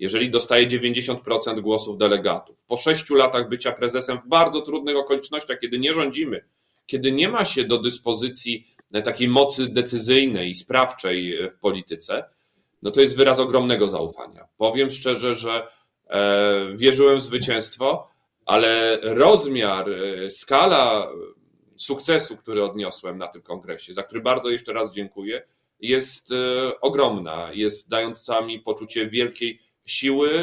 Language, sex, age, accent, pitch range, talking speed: Polish, male, 40-59, native, 105-130 Hz, 130 wpm